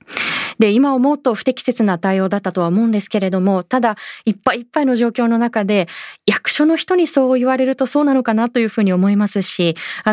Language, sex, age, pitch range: Japanese, female, 20-39, 185-250 Hz